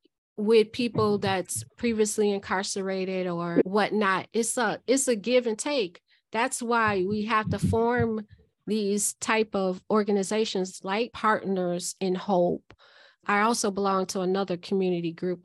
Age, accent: 30-49, American